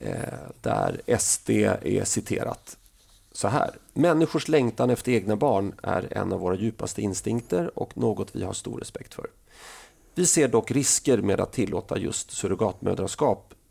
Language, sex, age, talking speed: Swedish, male, 30-49, 145 wpm